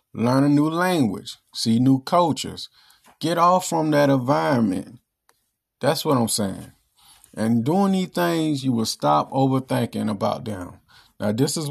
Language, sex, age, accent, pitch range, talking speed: English, male, 40-59, American, 115-150 Hz, 150 wpm